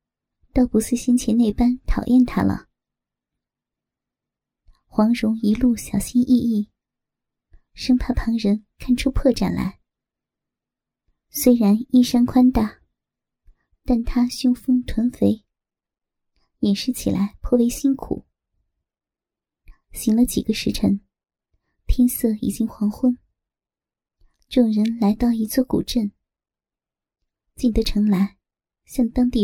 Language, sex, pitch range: Chinese, male, 215-250 Hz